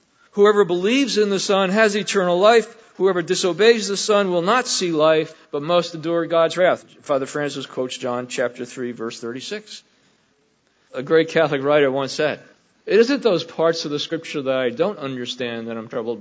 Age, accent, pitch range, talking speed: 50-69, American, 150-195 Hz, 180 wpm